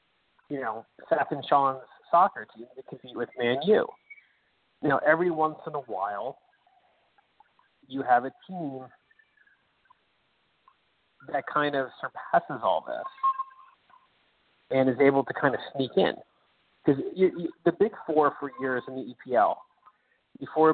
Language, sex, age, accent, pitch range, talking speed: English, male, 40-59, American, 130-190 Hz, 135 wpm